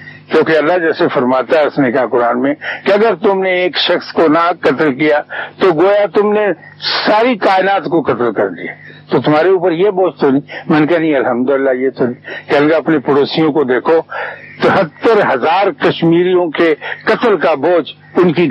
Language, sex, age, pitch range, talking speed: Urdu, male, 60-79, 150-215 Hz, 190 wpm